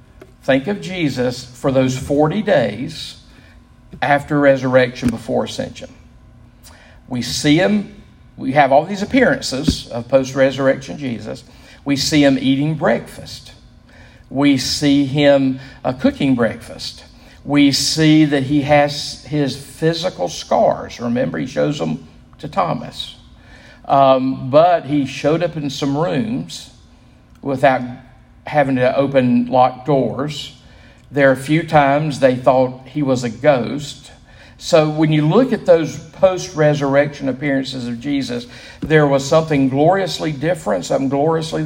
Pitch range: 130-150 Hz